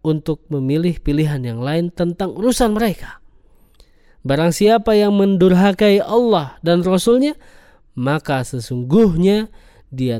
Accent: native